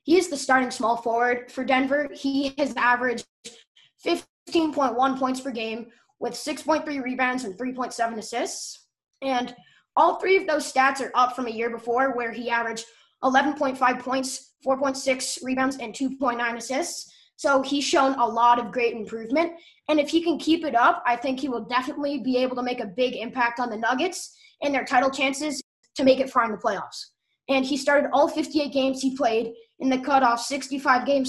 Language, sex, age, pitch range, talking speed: English, female, 20-39, 240-280 Hz, 185 wpm